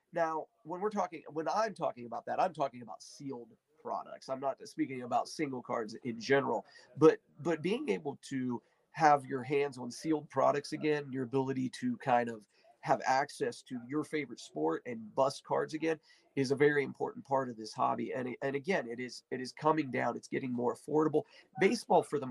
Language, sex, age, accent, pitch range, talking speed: English, male, 40-59, American, 130-170 Hz, 195 wpm